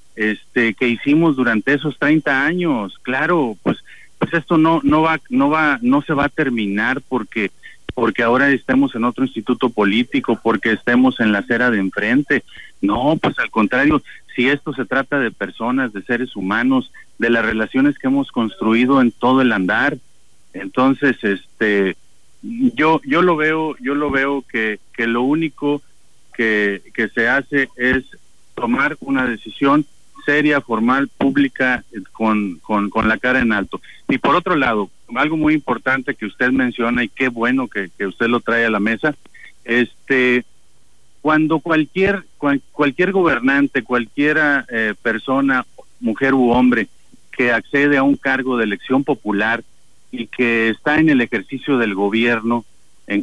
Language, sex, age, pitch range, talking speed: Spanish, male, 50-69, 110-145 Hz, 160 wpm